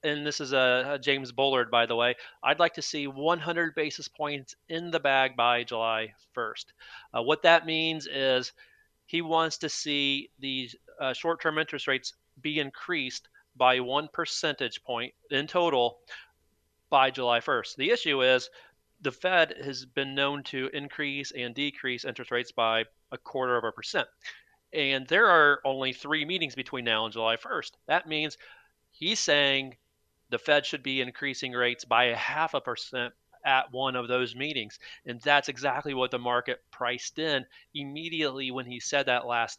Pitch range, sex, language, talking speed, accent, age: 125-150 Hz, male, English, 170 wpm, American, 40-59